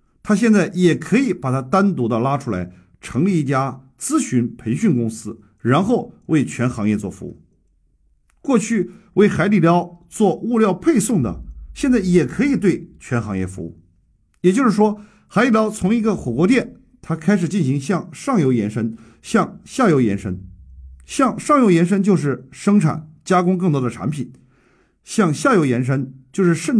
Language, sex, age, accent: Chinese, male, 50-69, native